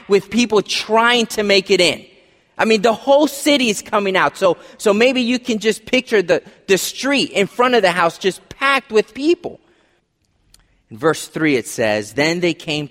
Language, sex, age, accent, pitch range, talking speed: English, male, 30-49, American, 175-250 Hz, 195 wpm